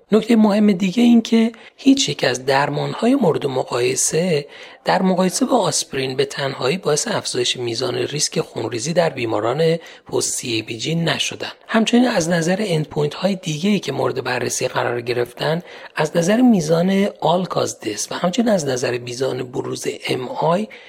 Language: Persian